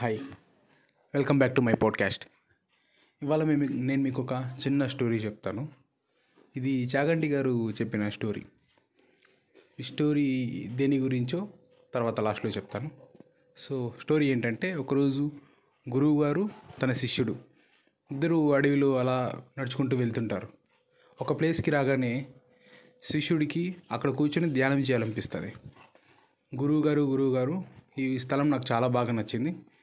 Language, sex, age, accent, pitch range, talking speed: Telugu, male, 30-49, native, 125-150 Hz, 110 wpm